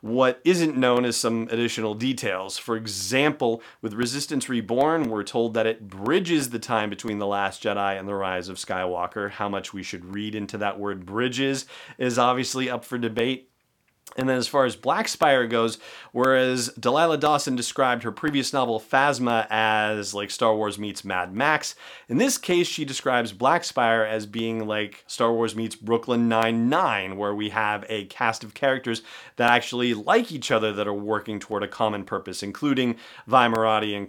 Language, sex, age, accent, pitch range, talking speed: English, male, 30-49, American, 105-125 Hz, 180 wpm